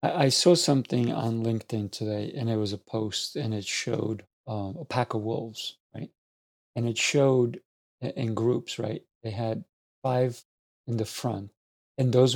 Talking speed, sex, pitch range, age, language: 165 wpm, male, 110-130 Hz, 50-69, English